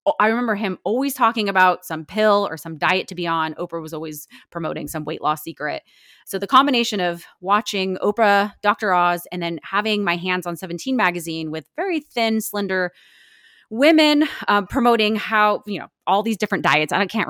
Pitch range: 170-215 Hz